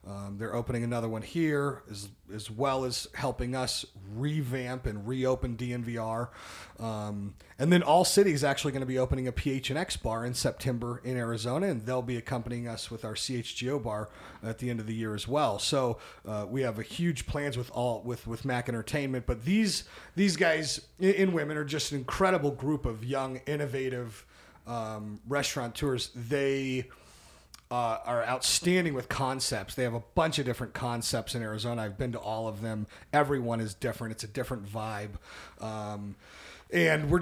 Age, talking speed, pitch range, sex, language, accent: 30-49, 185 wpm, 115-150 Hz, male, English, American